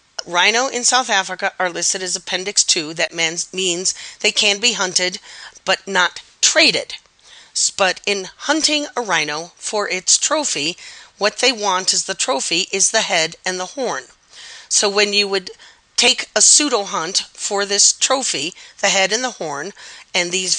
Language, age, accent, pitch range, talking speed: English, 40-59, American, 175-215 Hz, 160 wpm